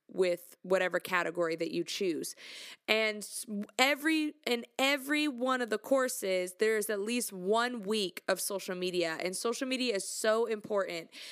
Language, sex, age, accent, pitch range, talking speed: English, female, 20-39, American, 185-240 Hz, 150 wpm